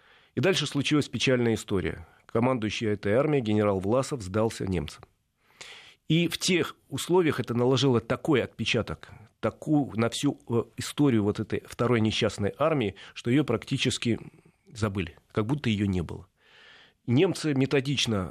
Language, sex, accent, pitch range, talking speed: Russian, male, native, 105-135 Hz, 130 wpm